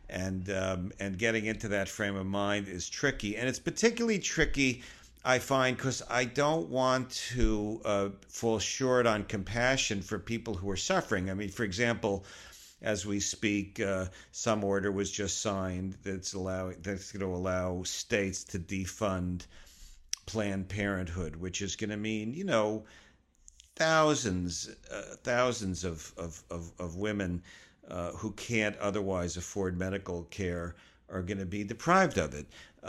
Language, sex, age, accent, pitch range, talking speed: English, male, 50-69, American, 90-110 Hz, 155 wpm